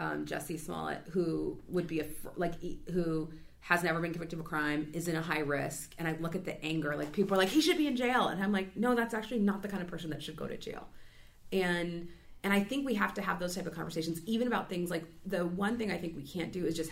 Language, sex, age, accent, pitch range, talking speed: English, female, 30-49, American, 160-210 Hz, 275 wpm